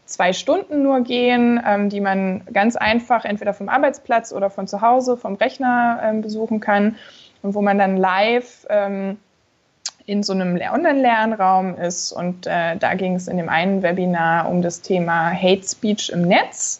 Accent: German